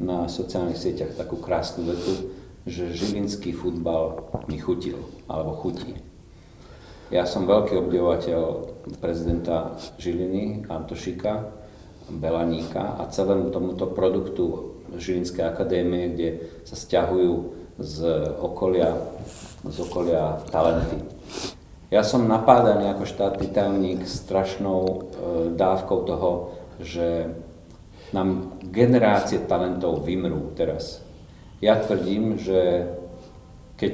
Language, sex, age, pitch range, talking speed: Slovak, male, 40-59, 85-100 Hz, 95 wpm